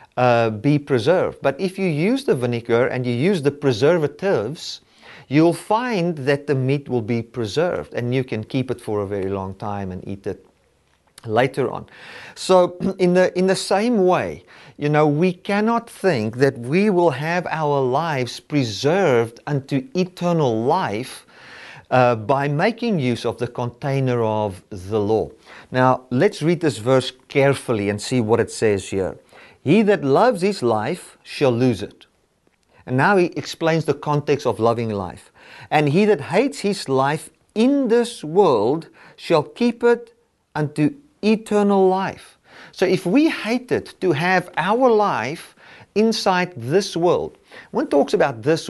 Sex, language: male, English